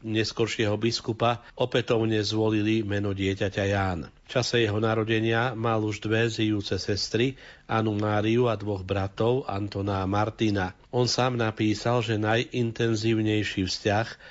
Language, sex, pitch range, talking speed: Slovak, male, 105-120 Hz, 120 wpm